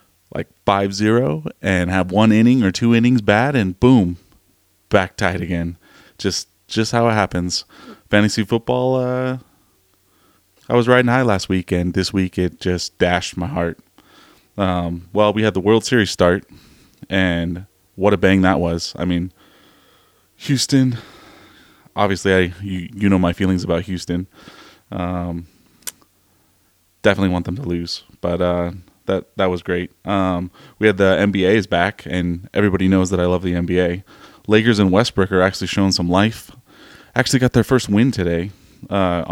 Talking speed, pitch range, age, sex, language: 160 wpm, 90-110 Hz, 20-39, male, English